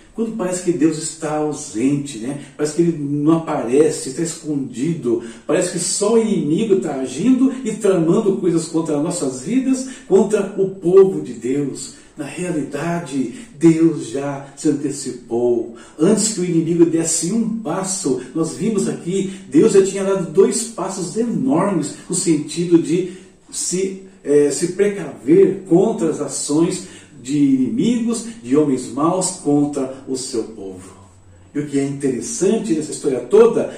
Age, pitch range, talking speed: 60-79, 135-215 Hz, 145 wpm